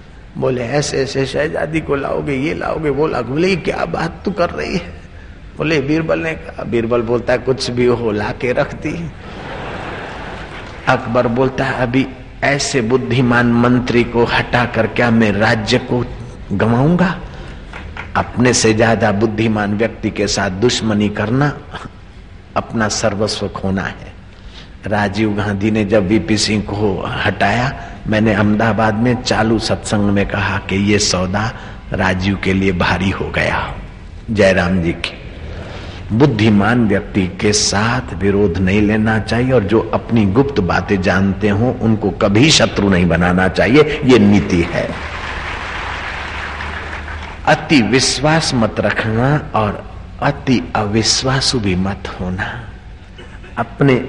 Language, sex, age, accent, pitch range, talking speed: Hindi, male, 50-69, native, 95-120 Hz, 130 wpm